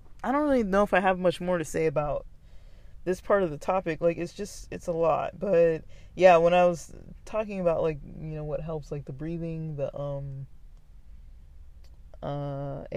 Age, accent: 20-39, American